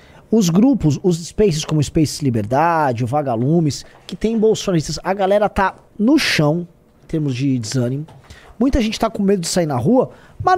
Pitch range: 150-230 Hz